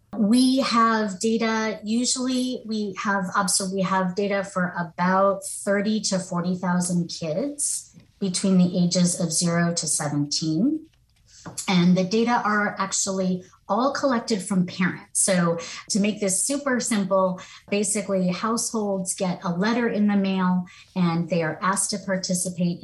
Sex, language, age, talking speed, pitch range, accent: female, English, 30-49, 135 wpm, 180-225 Hz, American